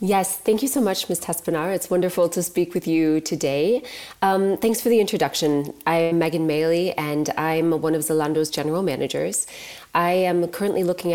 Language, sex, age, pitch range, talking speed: Dutch, female, 20-39, 145-170 Hz, 180 wpm